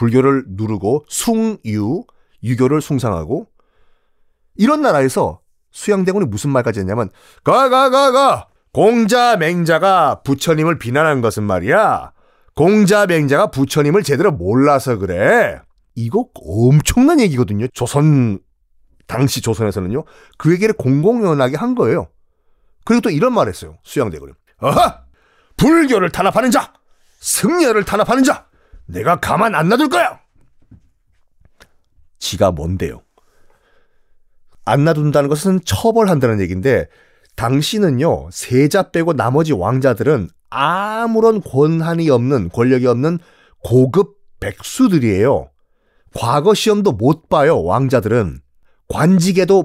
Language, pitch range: Korean, 120-195 Hz